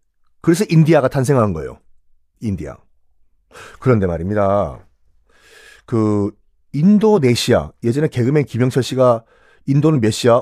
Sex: male